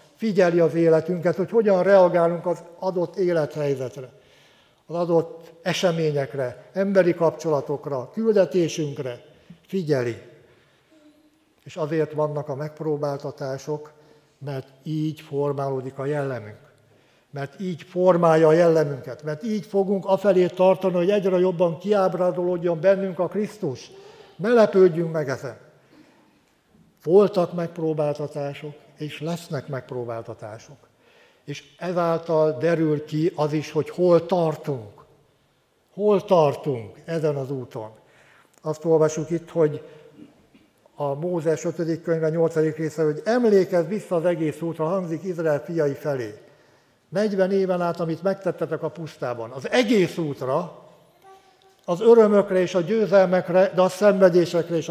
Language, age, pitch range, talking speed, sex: Hungarian, 60-79, 150-185 Hz, 115 wpm, male